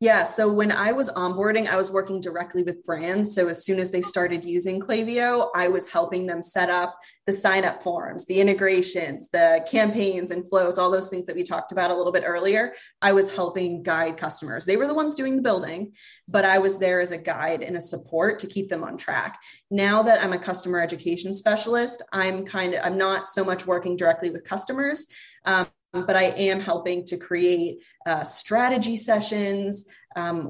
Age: 20-39